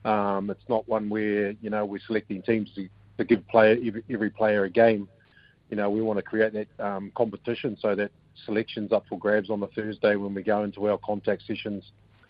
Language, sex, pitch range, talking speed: English, male, 100-110 Hz, 210 wpm